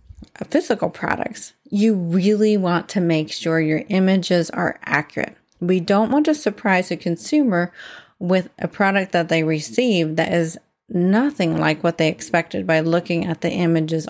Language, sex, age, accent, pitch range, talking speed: English, female, 30-49, American, 170-215 Hz, 160 wpm